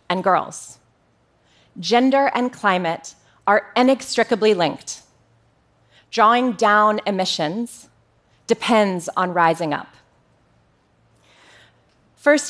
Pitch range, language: 175-235 Hz, Korean